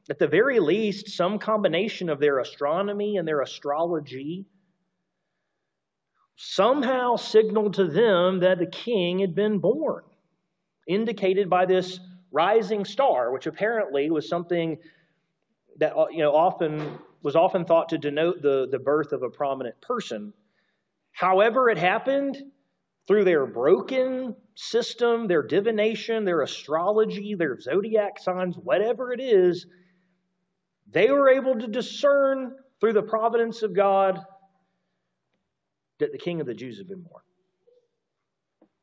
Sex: male